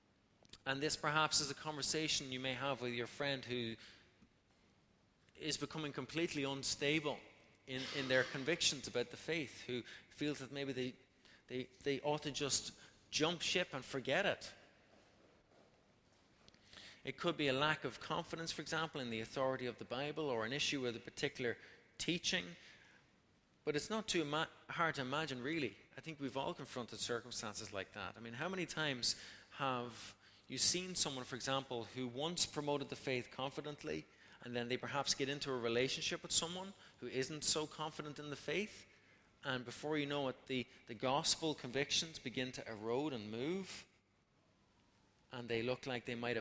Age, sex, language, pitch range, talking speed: 30-49, male, English, 120-150 Hz, 170 wpm